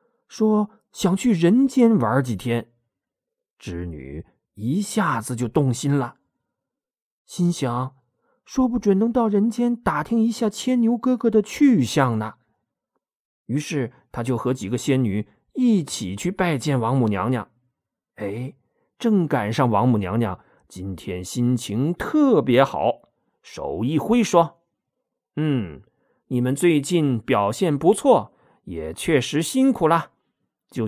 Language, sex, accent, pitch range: Chinese, male, native, 120-195 Hz